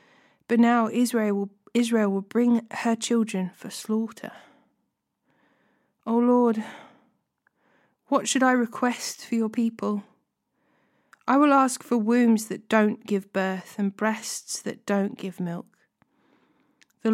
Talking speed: 130 wpm